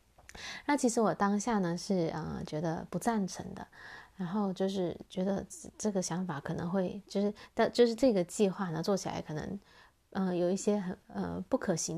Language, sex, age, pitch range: Chinese, female, 20-39, 180-210 Hz